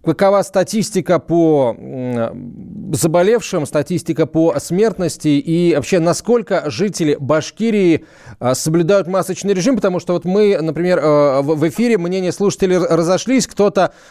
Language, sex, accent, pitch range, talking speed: Russian, male, native, 140-180 Hz, 110 wpm